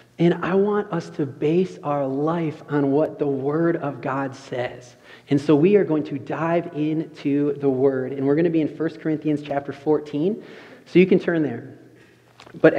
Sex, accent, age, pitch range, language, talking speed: male, American, 30-49, 135-160 Hz, English, 190 wpm